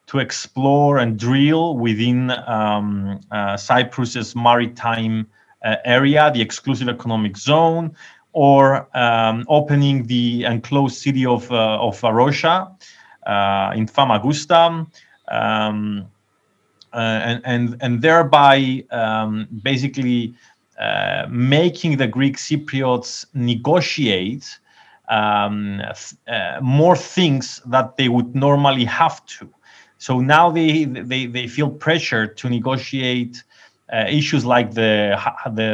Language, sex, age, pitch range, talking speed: English, male, 30-49, 110-140 Hz, 110 wpm